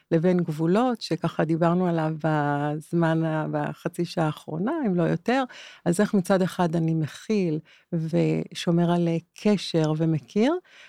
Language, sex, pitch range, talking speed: Hebrew, female, 165-200 Hz, 120 wpm